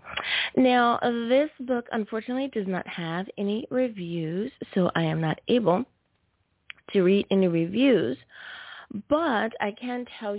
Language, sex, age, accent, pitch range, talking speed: English, female, 20-39, American, 165-225 Hz, 125 wpm